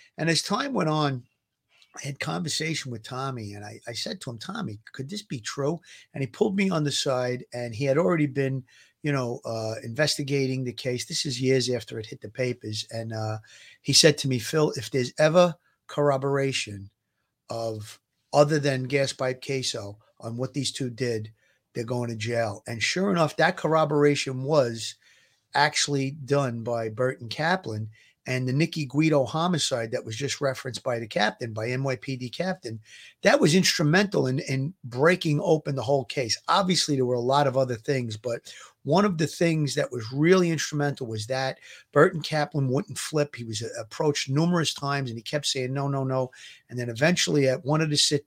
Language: English